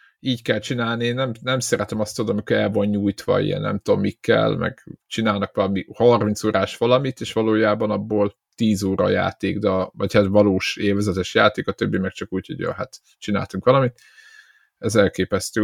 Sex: male